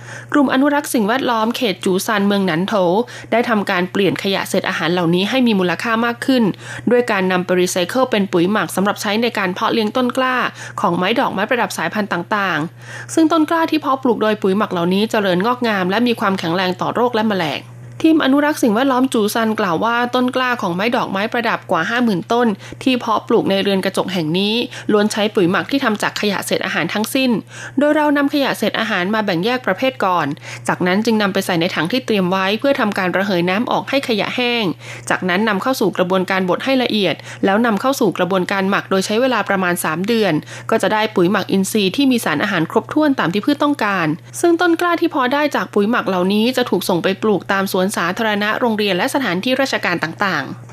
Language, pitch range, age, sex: Thai, 185-240 Hz, 20-39, female